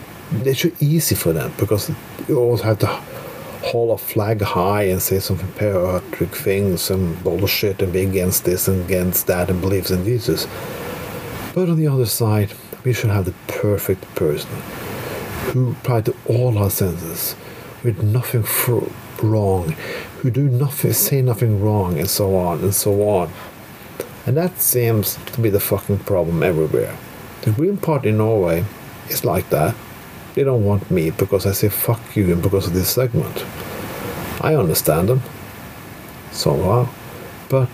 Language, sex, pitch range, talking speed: English, male, 100-125 Hz, 160 wpm